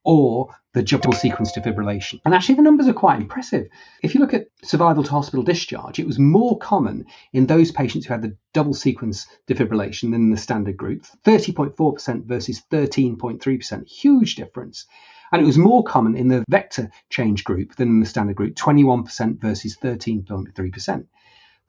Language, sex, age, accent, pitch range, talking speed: English, male, 30-49, British, 110-155 Hz, 160 wpm